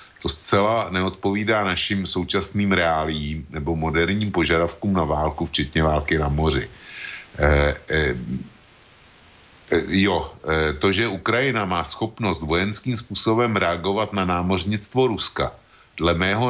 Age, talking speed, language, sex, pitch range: 50-69, 115 wpm, Slovak, male, 80-105 Hz